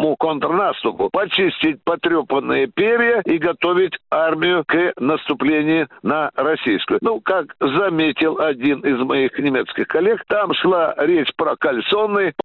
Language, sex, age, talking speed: Russian, male, 60-79, 115 wpm